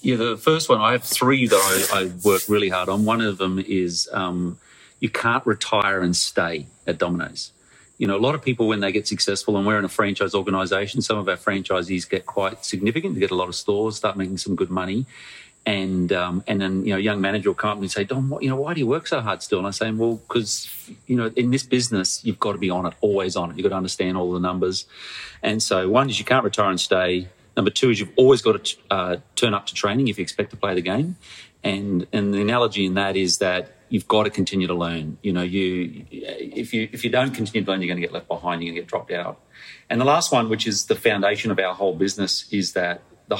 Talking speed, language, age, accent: 260 wpm, English, 40-59, Australian